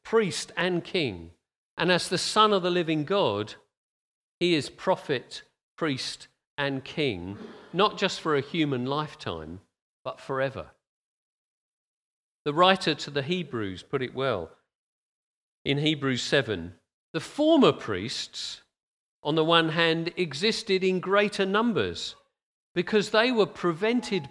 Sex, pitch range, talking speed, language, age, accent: male, 135-205 Hz, 125 wpm, English, 40-59, British